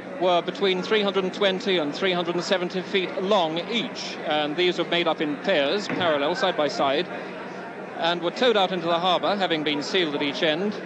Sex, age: male, 40-59